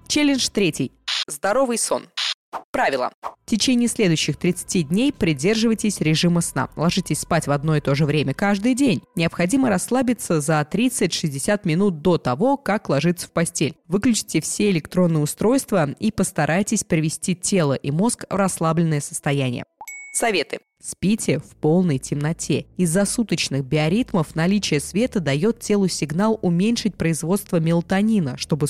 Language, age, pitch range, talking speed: Russian, 20-39, 160-205 Hz, 135 wpm